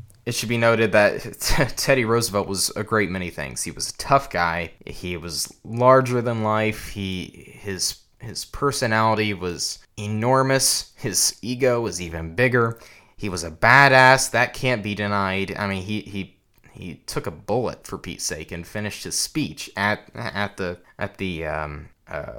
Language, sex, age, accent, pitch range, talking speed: English, male, 20-39, American, 100-135 Hz, 170 wpm